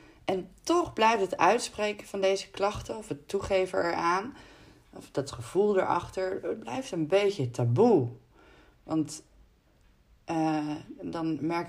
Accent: Dutch